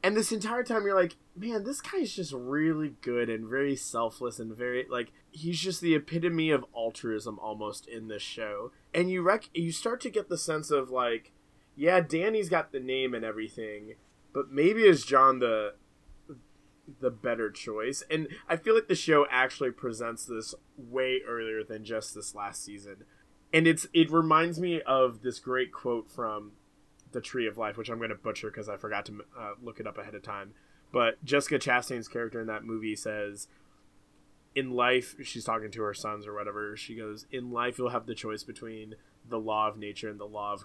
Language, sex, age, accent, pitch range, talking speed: English, male, 20-39, American, 110-150 Hz, 200 wpm